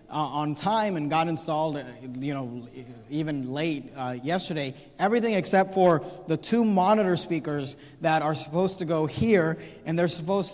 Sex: male